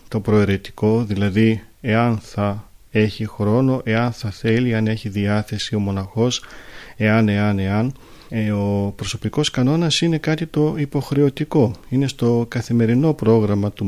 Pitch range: 110-135 Hz